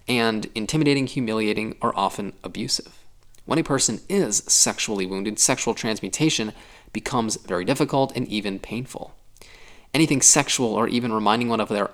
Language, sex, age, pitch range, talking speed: English, male, 20-39, 105-130 Hz, 140 wpm